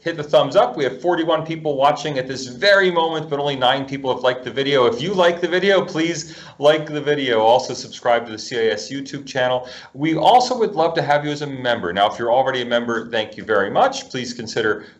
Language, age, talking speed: English, 30-49, 235 wpm